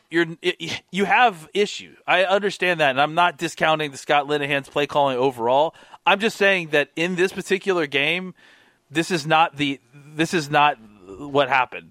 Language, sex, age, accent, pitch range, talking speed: English, male, 30-49, American, 130-165 Hz, 170 wpm